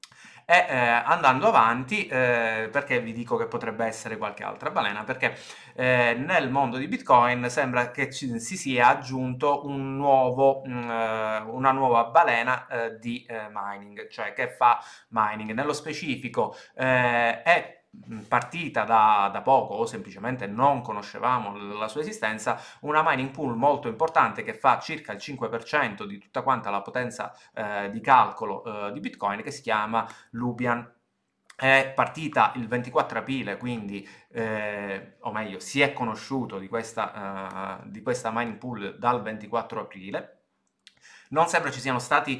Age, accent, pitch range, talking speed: 30-49, native, 110-130 Hz, 145 wpm